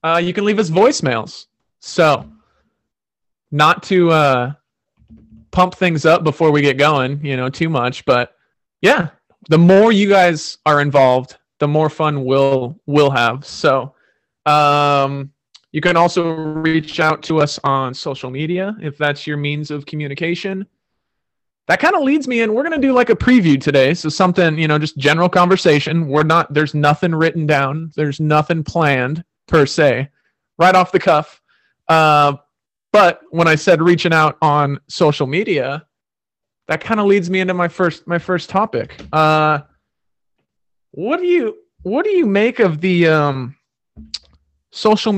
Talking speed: 160 wpm